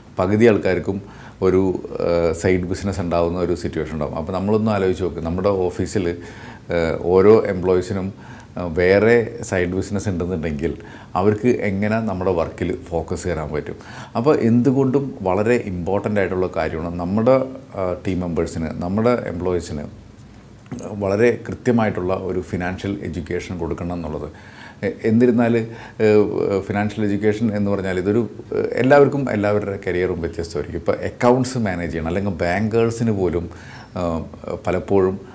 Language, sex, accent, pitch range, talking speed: Malayalam, male, native, 90-110 Hz, 110 wpm